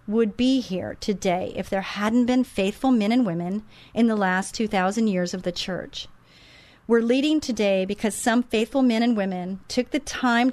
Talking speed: 190 wpm